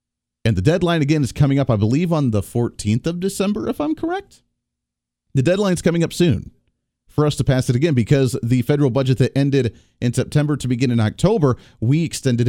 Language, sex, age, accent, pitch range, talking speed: English, male, 40-59, American, 115-165 Hz, 200 wpm